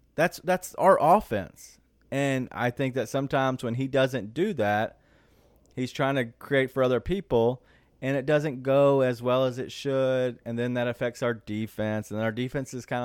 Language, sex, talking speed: English, male, 190 wpm